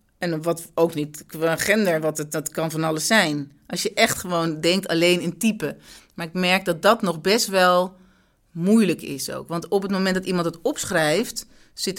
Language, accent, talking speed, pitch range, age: Dutch, Dutch, 205 wpm, 155-195 Hz, 40-59